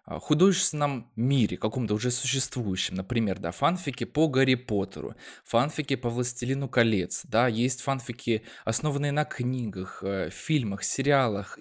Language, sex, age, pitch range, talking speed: Russian, male, 20-39, 105-135 Hz, 120 wpm